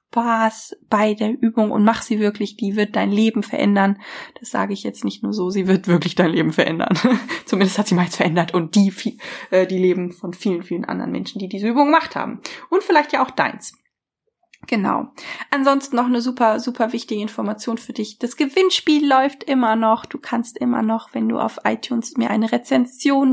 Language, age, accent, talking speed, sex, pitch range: German, 20-39, German, 195 wpm, female, 205-245 Hz